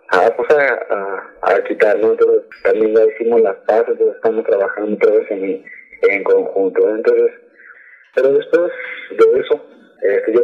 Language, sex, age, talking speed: Spanish, male, 30-49, 150 wpm